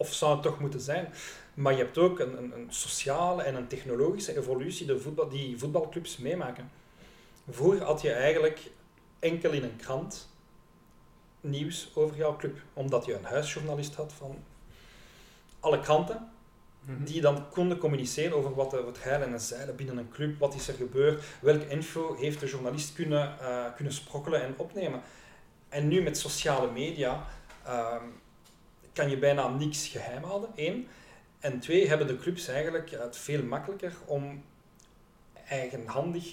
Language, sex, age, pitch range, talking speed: Dutch, male, 40-59, 130-155 Hz, 155 wpm